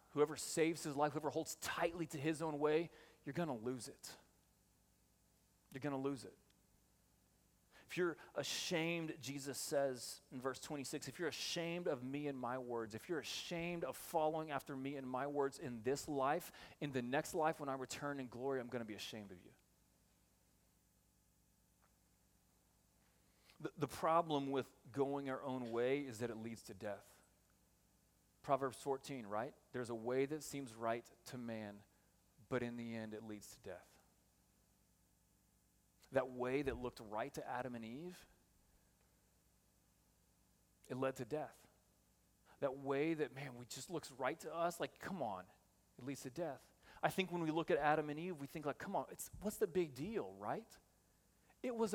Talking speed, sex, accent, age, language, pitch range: 175 wpm, male, American, 30-49, English, 95-150 Hz